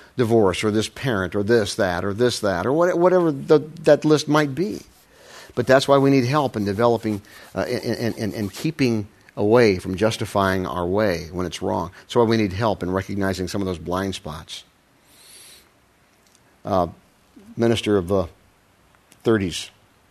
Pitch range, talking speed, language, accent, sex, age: 95-125 Hz, 155 wpm, English, American, male, 50-69